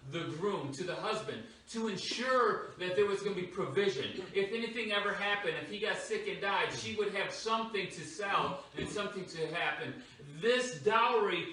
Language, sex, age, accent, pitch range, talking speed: English, male, 40-59, American, 180-225 Hz, 185 wpm